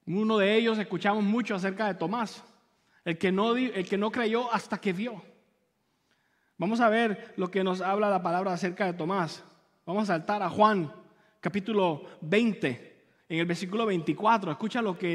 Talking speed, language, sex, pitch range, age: 165 wpm, English, male, 185-235 Hz, 30-49